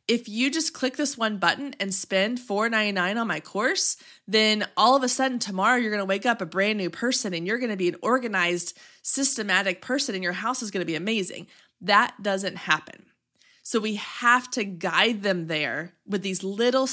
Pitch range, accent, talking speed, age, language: 180-235 Hz, American, 205 wpm, 20-39, English